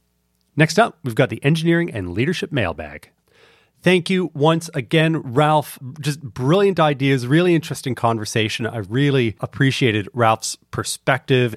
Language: English